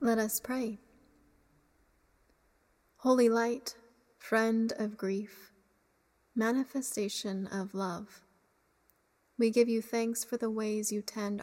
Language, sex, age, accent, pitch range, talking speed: English, female, 30-49, American, 205-235 Hz, 105 wpm